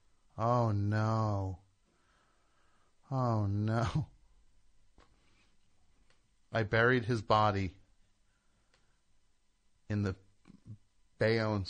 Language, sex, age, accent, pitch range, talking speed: English, male, 30-49, American, 90-110 Hz, 55 wpm